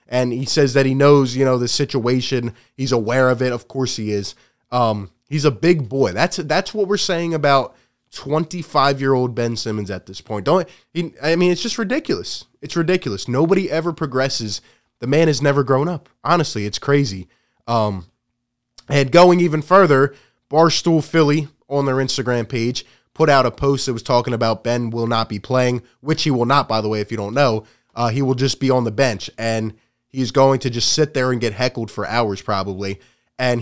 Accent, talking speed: American, 205 wpm